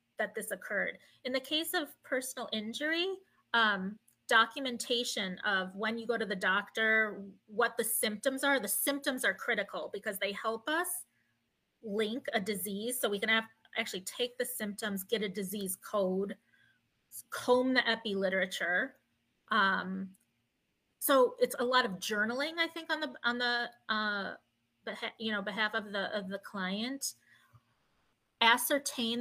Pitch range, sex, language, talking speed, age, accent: 200-255 Hz, female, English, 150 wpm, 30-49, American